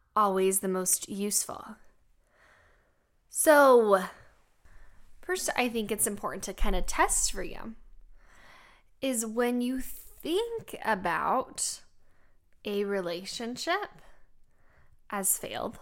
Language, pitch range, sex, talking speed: English, 190-280 Hz, female, 95 wpm